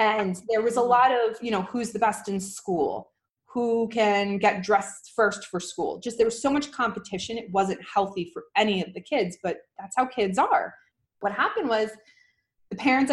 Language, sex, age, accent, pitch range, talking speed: English, female, 20-39, American, 195-230 Hz, 200 wpm